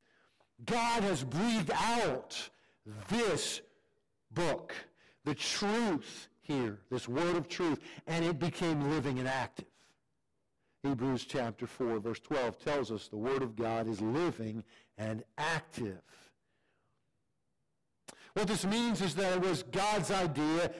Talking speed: 125 wpm